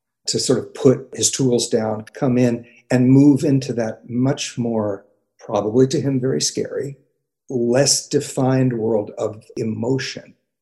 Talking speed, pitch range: 140 wpm, 115-155 Hz